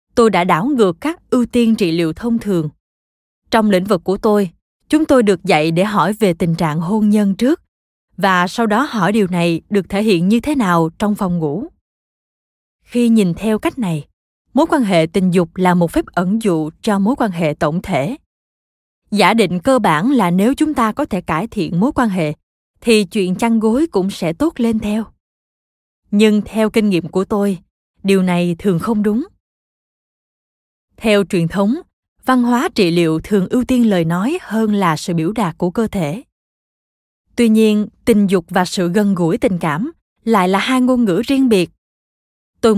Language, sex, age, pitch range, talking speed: Vietnamese, female, 20-39, 175-230 Hz, 190 wpm